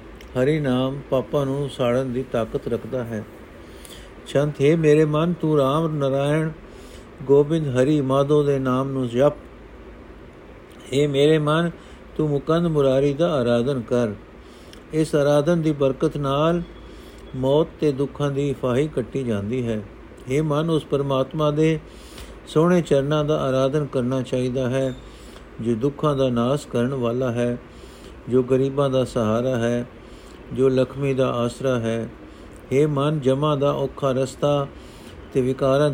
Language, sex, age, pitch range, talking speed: Punjabi, male, 50-69, 125-145 Hz, 135 wpm